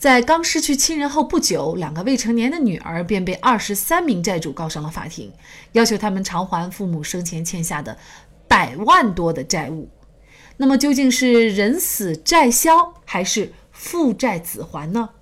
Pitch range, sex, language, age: 175-255 Hz, female, Chinese, 30-49